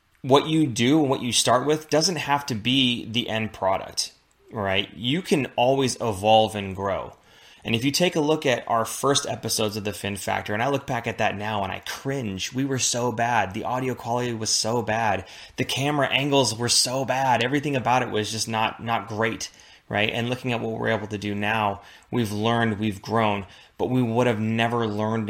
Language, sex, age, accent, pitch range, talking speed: English, male, 20-39, American, 105-130 Hz, 215 wpm